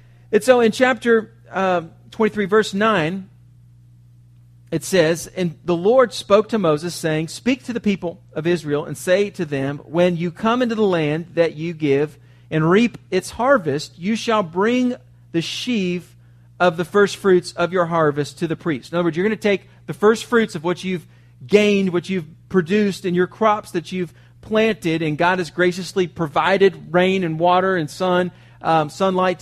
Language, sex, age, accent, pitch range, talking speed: English, male, 40-59, American, 140-190 Hz, 185 wpm